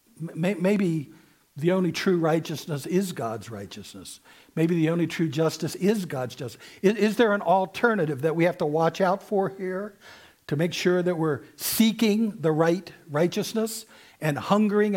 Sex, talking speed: male, 160 wpm